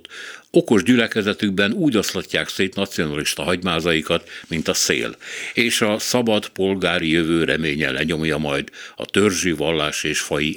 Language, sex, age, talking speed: Hungarian, male, 60-79, 130 wpm